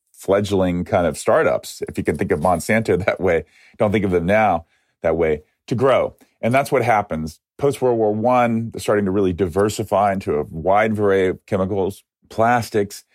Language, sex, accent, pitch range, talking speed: English, male, American, 90-115 Hz, 185 wpm